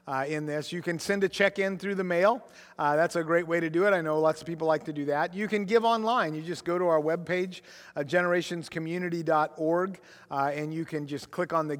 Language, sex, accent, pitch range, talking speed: English, male, American, 145-180 Hz, 245 wpm